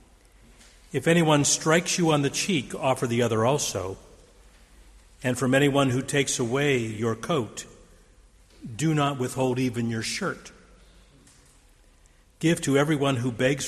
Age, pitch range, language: 60-79, 100-135 Hz, English